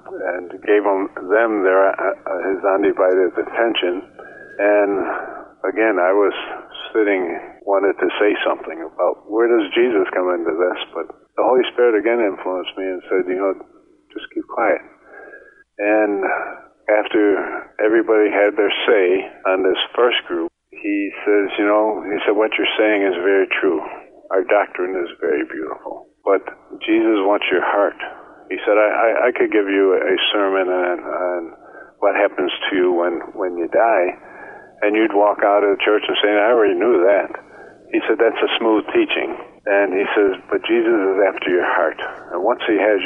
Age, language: 50-69, English